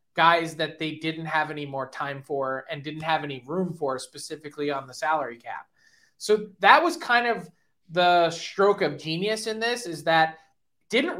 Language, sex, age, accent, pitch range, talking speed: English, male, 20-39, American, 155-190 Hz, 180 wpm